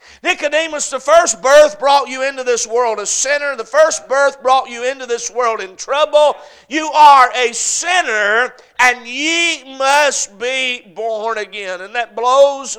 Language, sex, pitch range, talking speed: English, male, 235-300 Hz, 160 wpm